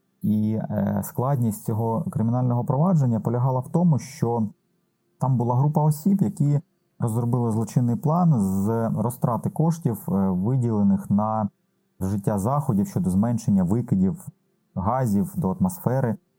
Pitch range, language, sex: 110-170 Hz, Ukrainian, male